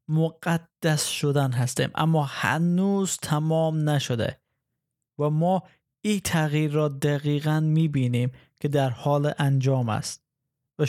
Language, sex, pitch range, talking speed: Persian, male, 140-170 Hz, 110 wpm